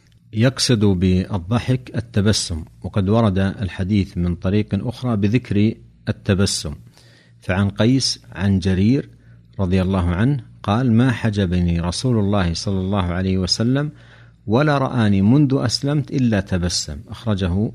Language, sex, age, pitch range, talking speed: Arabic, male, 60-79, 95-120 Hz, 115 wpm